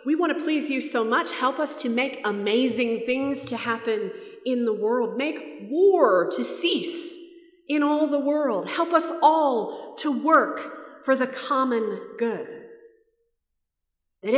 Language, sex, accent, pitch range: English, female, American, 230-360 Hz